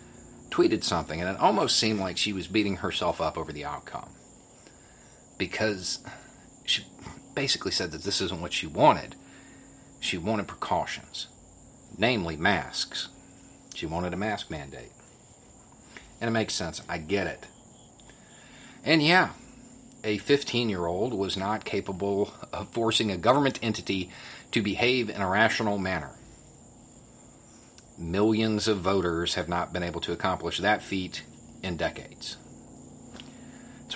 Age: 40-59